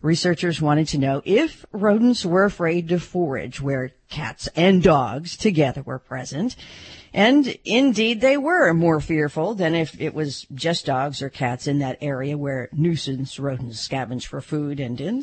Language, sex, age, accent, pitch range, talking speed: English, female, 50-69, American, 135-185 Hz, 165 wpm